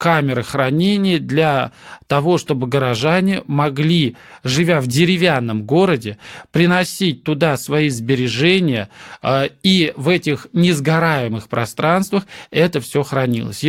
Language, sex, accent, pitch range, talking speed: Russian, male, native, 130-170 Hz, 100 wpm